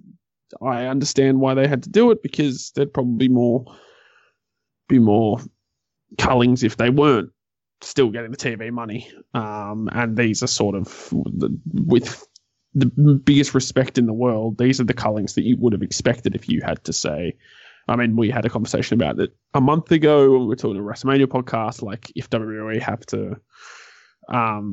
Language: English